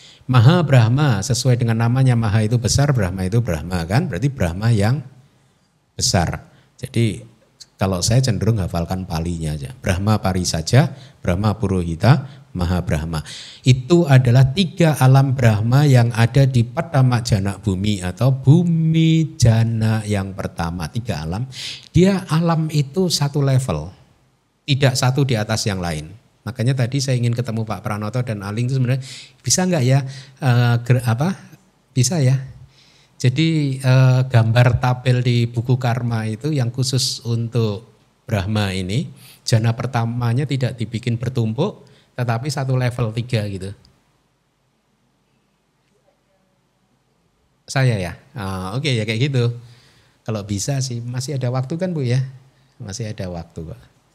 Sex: male